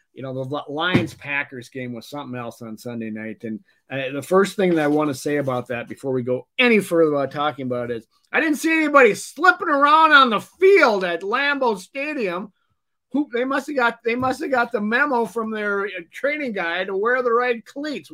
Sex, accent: male, American